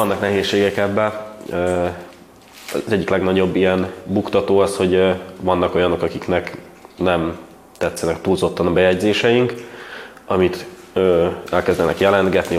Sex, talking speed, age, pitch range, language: male, 100 wpm, 20-39, 85-95 Hz, Hungarian